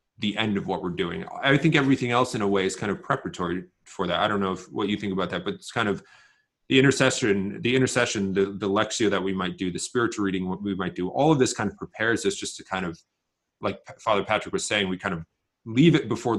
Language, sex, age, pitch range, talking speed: English, male, 30-49, 95-120 Hz, 260 wpm